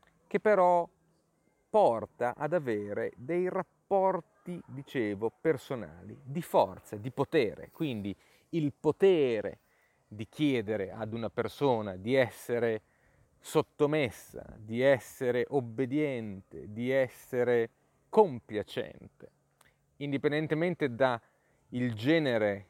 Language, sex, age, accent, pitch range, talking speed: Italian, male, 30-49, native, 110-150 Hz, 85 wpm